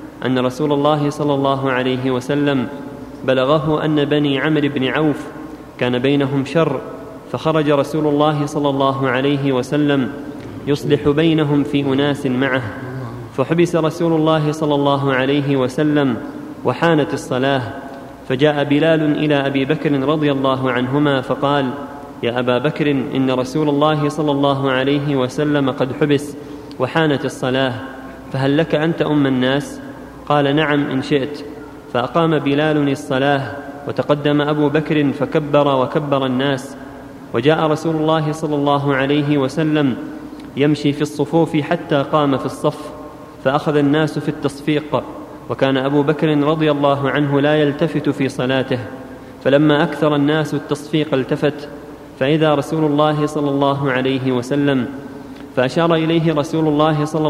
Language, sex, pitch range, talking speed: Arabic, male, 135-150 Hz, 130 wpm